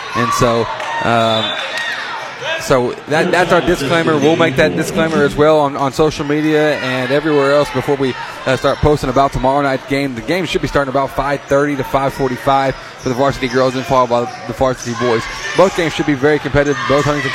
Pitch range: 130-180 Hz